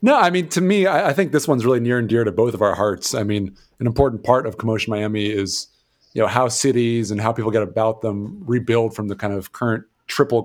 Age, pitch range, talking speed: 30-49, 100-115 Hz, 260 wpm